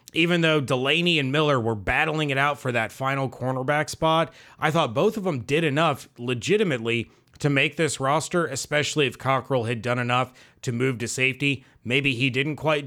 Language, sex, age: English, male, 30-49